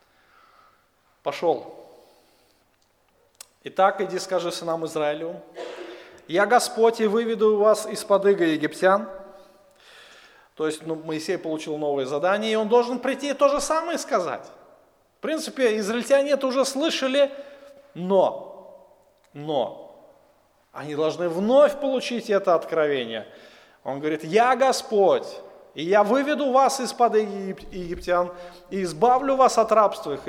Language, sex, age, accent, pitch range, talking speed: Russian, male, 30-49, native, 180-255 Hz, 115 wpm